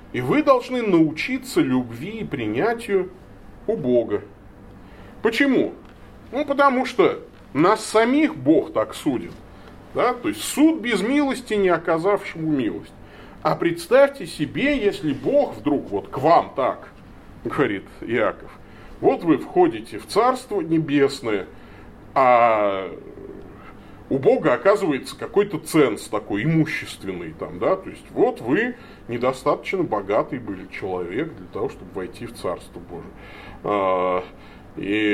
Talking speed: 120 wpm